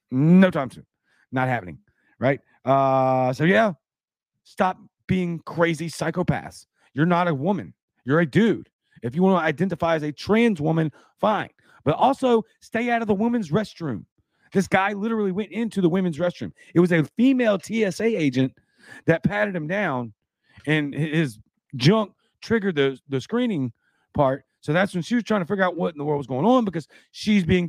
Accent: American